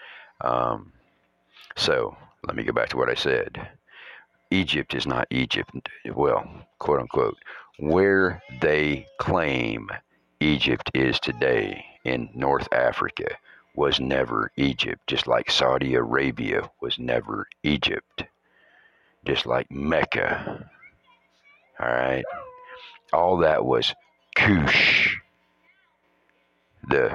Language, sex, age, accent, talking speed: English, male, 60-79, American, 100 wpm